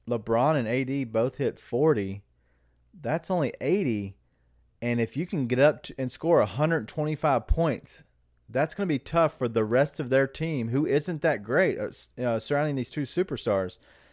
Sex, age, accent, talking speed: male, 30-49, American, 160 wpm